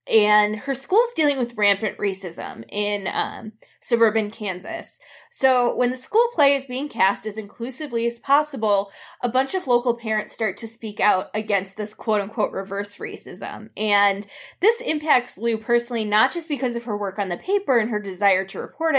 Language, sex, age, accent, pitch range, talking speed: English, female, 20-39, American, 205-255 Hz, 175 wpm